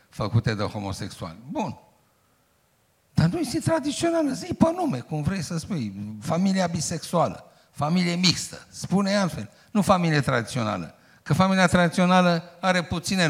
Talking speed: 130 wpm